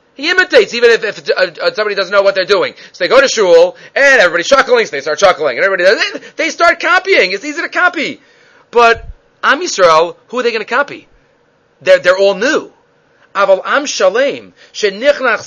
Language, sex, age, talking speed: English, male, 40-59, 160 wpm